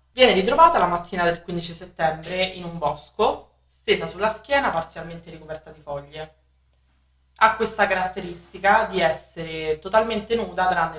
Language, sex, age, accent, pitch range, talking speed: Italian, female, 20-39, native, 150-185 Hz, 135 wpm